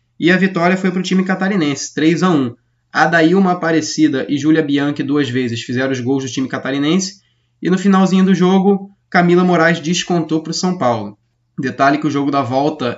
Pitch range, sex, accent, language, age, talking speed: 125-165 Hz, male, Brazilian, Portuguese, 20-39, 185 wpm